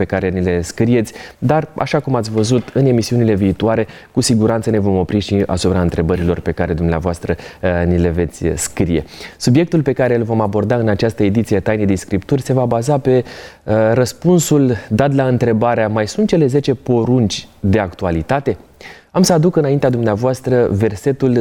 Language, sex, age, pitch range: Romanian, male, 20-39, 105-135 Hz